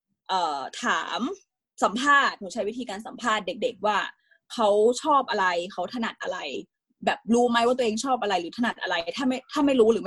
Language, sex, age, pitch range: Thai, female, 20-39, 200-255 Hz